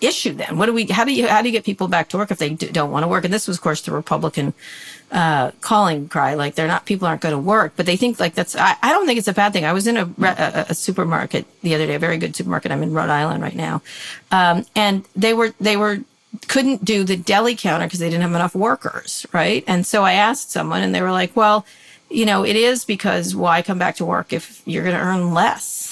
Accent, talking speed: American, 270 wpm